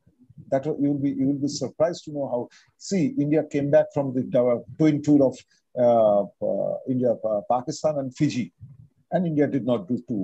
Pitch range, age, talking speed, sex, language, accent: 130-155 Hz, 50-69, 175 wpm, male, English, Indian